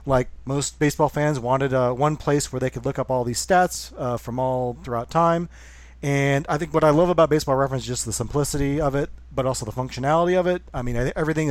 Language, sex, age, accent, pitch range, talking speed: English, male, 40-59, American, 120-150 Hz, 245 wpm